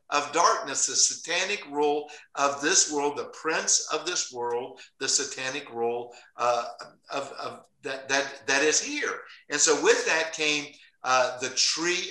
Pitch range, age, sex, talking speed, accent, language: 140-225 Hz, 60-79, male, 160 wpm, American, English